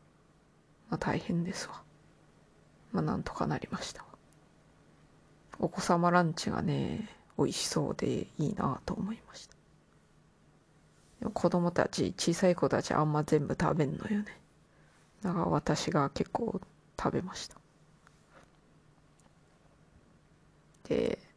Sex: female